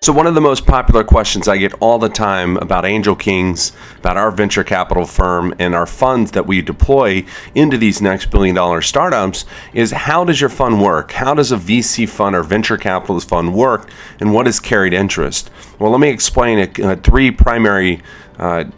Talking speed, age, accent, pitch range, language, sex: 200 wpm, 40-59, American, 95-115 Hz, English, male